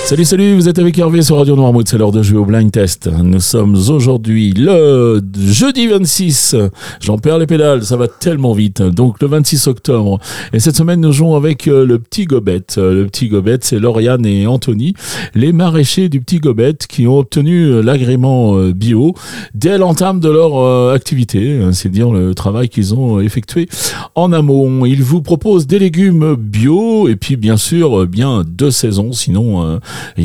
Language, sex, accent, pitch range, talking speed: French, male, French, 110-155 Hz, 175 wpm